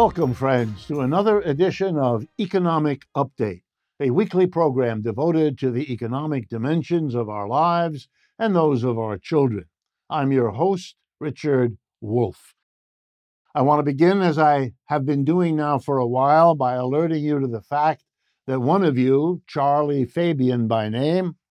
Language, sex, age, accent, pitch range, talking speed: English, male, 60-79, American, 130-175 Hz, 155 wpm